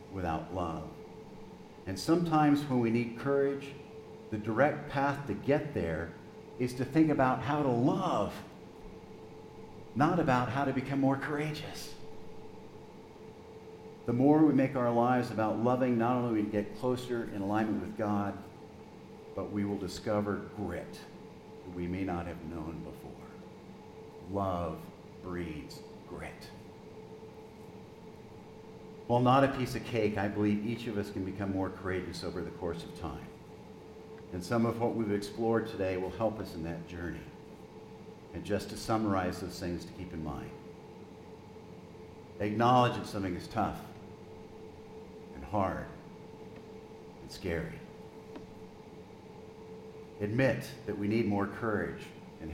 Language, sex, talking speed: English, male, 135 wpm